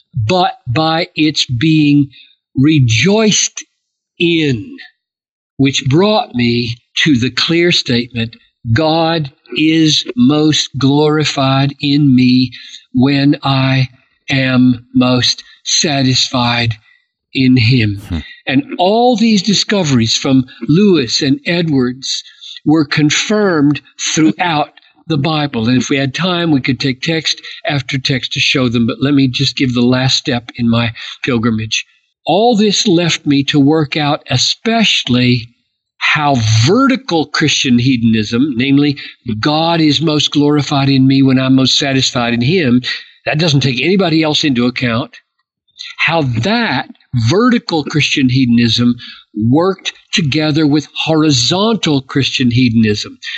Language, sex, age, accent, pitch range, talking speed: English, male, 60-79, American, 125-155 Hz, 120 wpm